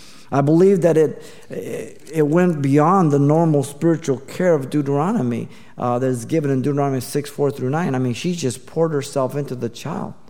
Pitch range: 130-170 Hz